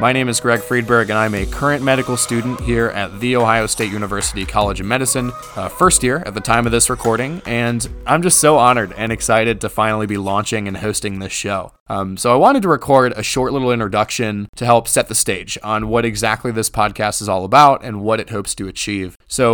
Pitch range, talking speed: 105-125 Hz, 225 wpm